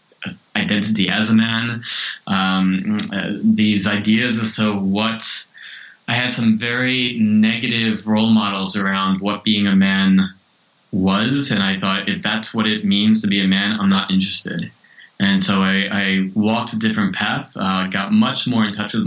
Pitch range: 95-120 Hz